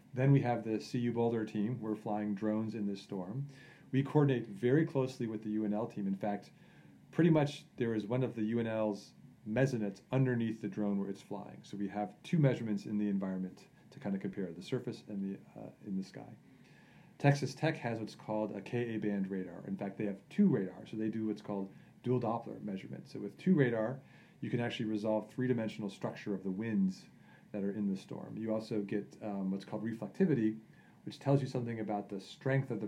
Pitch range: 100-125 Hz